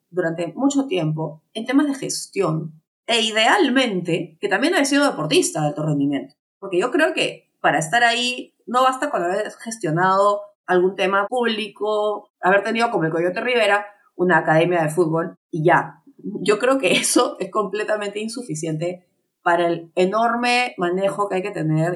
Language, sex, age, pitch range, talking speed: English, female, 30-49, 160-215 Hz, 160 wpm